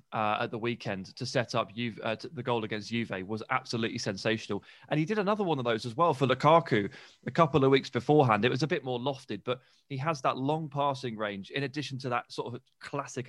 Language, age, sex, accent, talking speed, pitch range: English, 20-39, male, British, 230 wpm, 115-150 Hz